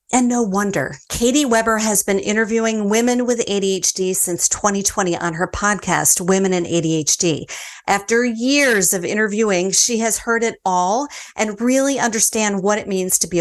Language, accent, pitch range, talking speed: English, American, 180-230 Hz, 160 wpm